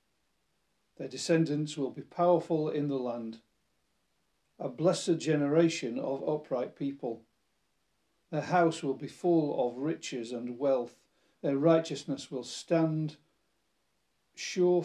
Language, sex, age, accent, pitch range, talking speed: English, male, 50-69, British, 135-170 Hz, 115 wpm